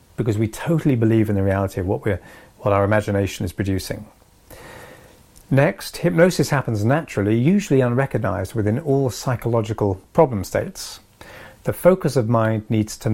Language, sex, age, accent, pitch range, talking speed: English, male, 40-59, British, 105-135 Hz, 140 wpm